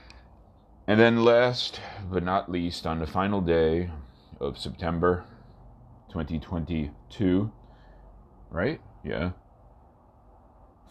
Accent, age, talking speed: American, 40-59, 90 wpm